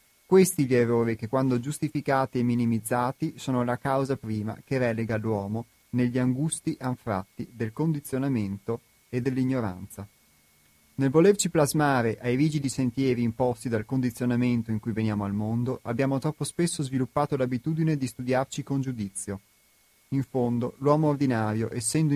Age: 30-49